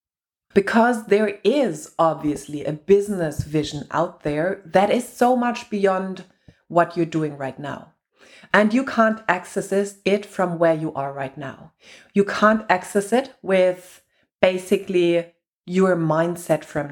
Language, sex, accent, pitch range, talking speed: English, female, German, 165-210 Hz, 140 wpm